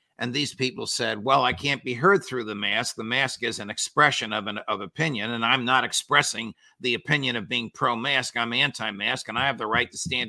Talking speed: 225 wpm